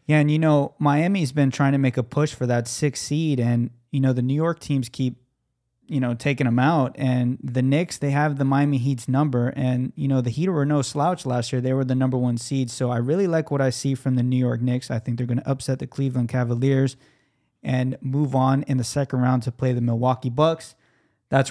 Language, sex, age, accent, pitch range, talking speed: English, male, 20-39, American, 125-140 Hz, 245 wpm